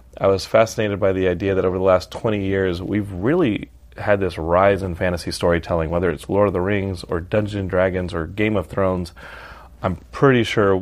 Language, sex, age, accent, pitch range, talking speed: English, male, 30-49, American, 95-110 Hz, 200 wpm